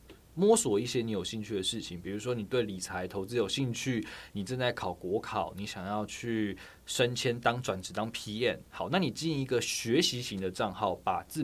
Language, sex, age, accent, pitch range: Chinese, male, 20-39, native, 95-120 Hz